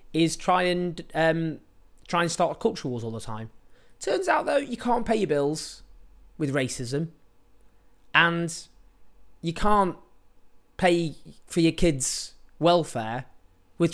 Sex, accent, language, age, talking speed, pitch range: male, British, English, 20-39, 135 wpm, 115-160 Hz